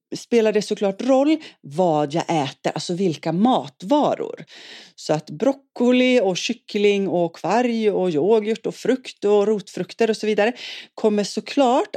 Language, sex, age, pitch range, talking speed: Swedish, female, 30-49, 155-215 Hz, 140 wpm